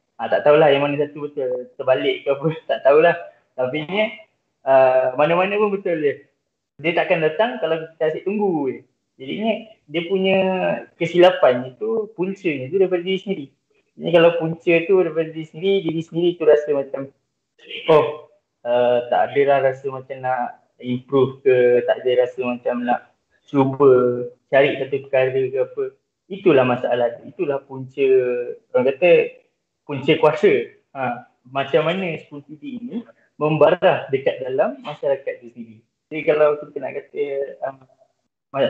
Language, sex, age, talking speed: Malay, male, 20-39, 150 wpm